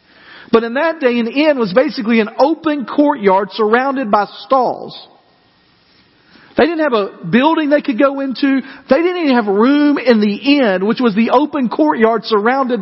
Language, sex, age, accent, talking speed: English, male, 50-69, American, 175 wpm